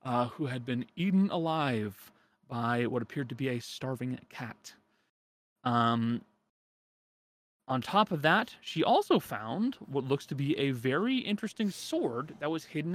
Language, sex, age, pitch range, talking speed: English, male, 30-49, 115-150 Hz, 155 wpm